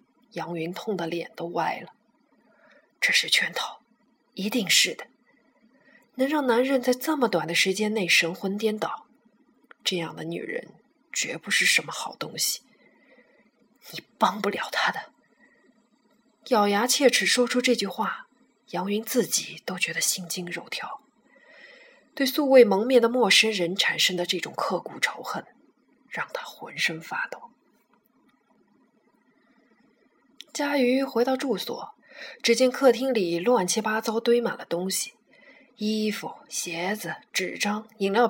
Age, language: 20-39, Chinese